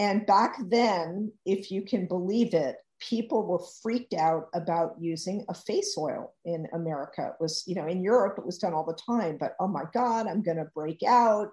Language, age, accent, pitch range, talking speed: English, 50-69, American, 165-205 Hz, 210 wpm